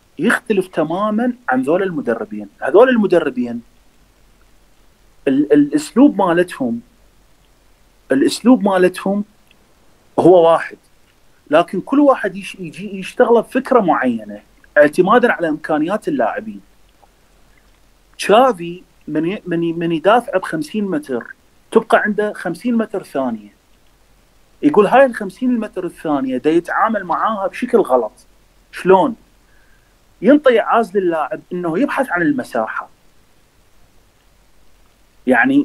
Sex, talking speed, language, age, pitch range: male, 100 wpm, Arabic, 30-49, 155-245 Hz